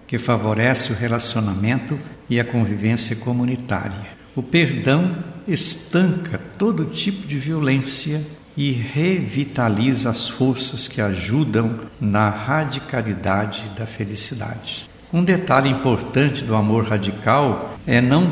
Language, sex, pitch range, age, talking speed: Portuguese, male, 110-145 Hz, 60-79, 110 wpm